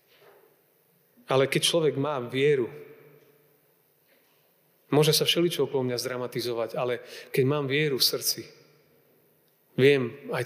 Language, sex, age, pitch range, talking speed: Slovak, male, 30-49, 135-175 Hz, 110 wpm